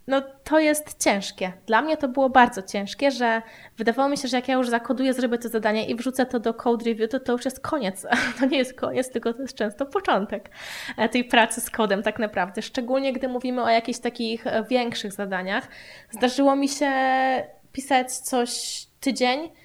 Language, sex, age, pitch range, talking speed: Polish, female, 20-39, 230-265 Hz, 190 wpm